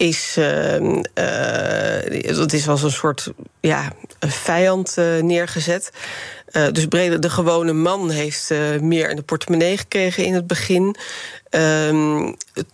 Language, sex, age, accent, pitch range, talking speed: Dutch, female, 40-59, Dutch, 165-205 Hz, 145 wpm